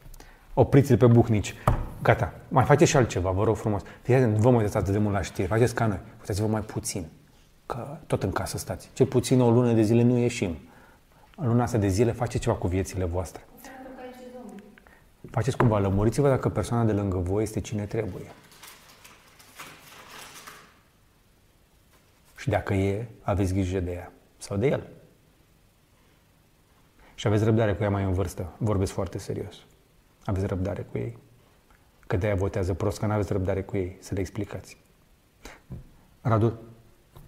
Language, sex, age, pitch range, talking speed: Romanian, male, 30-49, 95-115 Hz, 160 wpm